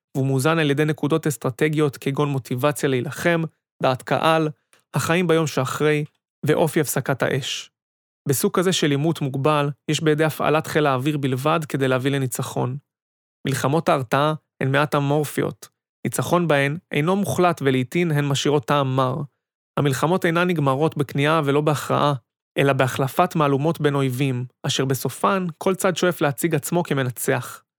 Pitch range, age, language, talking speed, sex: 135-165 Hz, 30-49, Hebrew, 140 wpm, male